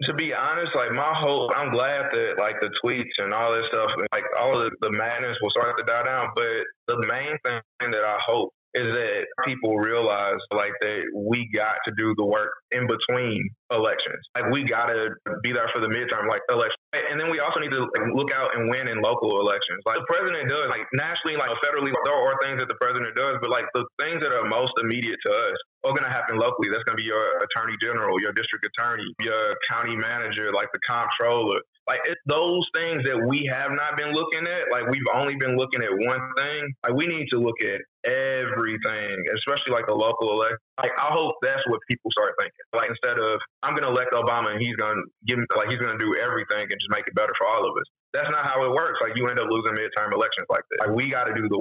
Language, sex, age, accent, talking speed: English, male, 20-39, American, 235 wpm